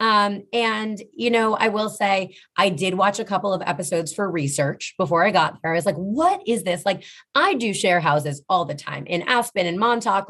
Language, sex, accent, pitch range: English, female, American, 170-215 Hz